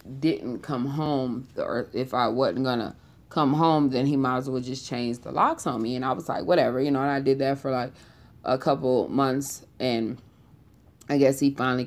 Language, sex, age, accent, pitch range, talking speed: English, female, 20-39, American, 125-150 Hz, 210 wpm